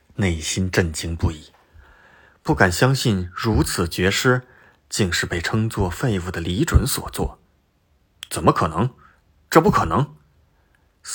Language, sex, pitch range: Chinese, male, 85-110 Hz